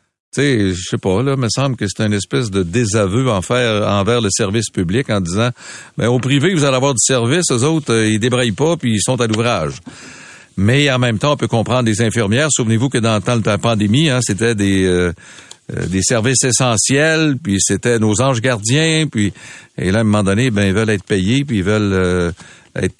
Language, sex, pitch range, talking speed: French, male, 110-145 Hz, 225 wpm